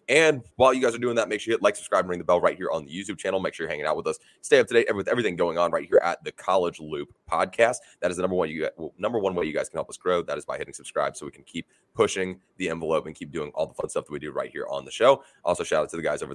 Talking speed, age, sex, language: 340 wpm, 20-39, male, English